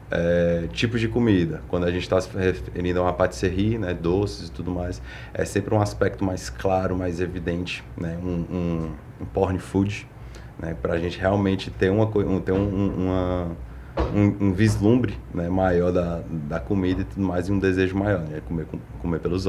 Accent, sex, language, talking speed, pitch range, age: Brazilian, male, Portuguese, 190 wpm, 85-105 Hz, 30-49